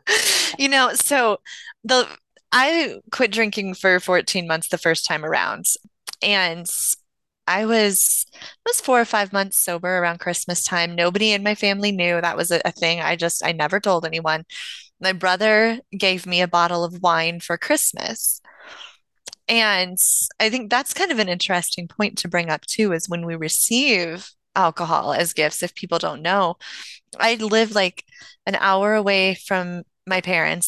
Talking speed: 170 wpm